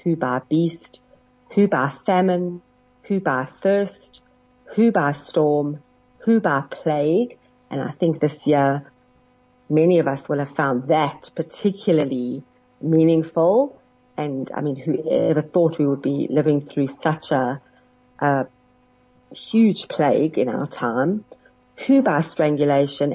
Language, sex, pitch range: English, female, 145-180 Hz